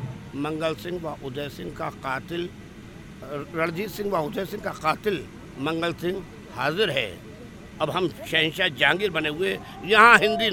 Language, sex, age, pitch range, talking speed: Hindi, male, 60-79, 155-195 Hz, 150 wpm